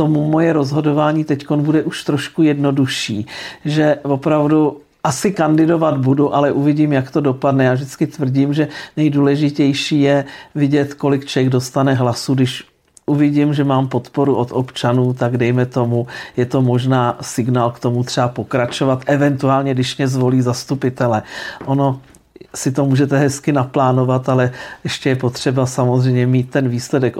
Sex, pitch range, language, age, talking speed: male, 130-145 Hz, Czech, 50-69, 145 wpm